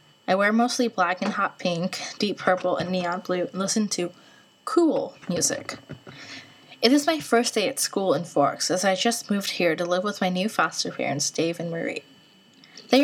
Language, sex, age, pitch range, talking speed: English, female, 10-29, 175-225 Hz, 195 wpm